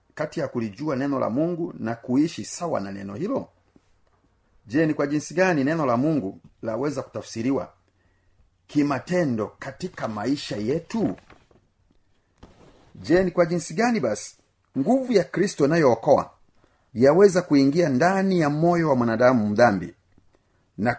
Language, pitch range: Swahili, 100-155 Hz